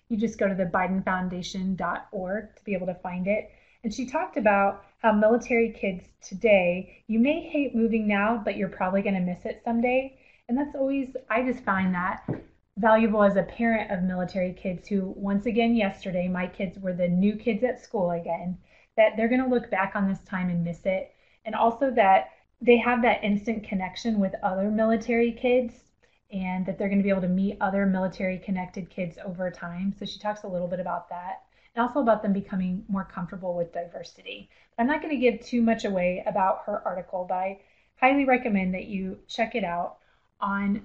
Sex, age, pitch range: female, 20-39, 190-230 Hz